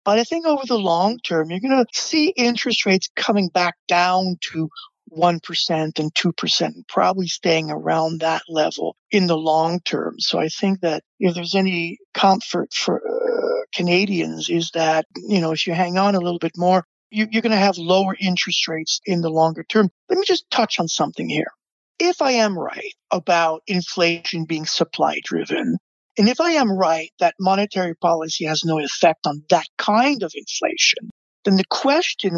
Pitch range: 170-230 Hz